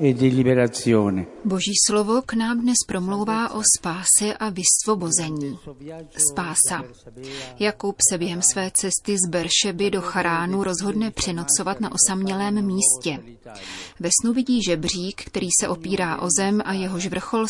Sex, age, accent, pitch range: female, 30-49, native, 170-200 Hz